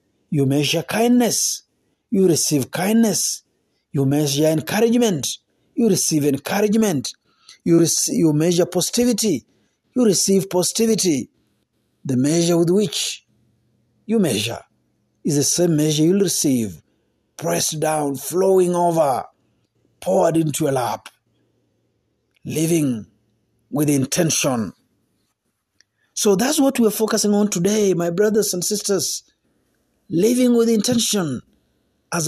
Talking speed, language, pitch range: 110 wpm, Swahili, 140-210 Hz